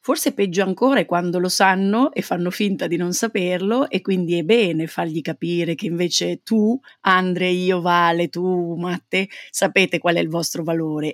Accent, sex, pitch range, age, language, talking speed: native, female, 165-200 Hz, 30-49, Italian, 180 wpm